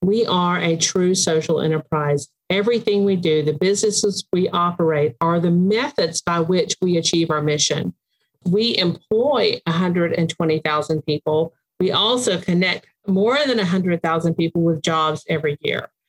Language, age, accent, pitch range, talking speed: English, 50-69, American, 155-190 Hz, 140 wpm